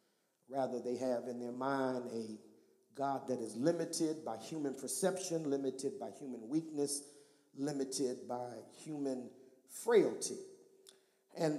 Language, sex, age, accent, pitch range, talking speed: English, male, 50-69, American, 135-185 Hz, 120 wpm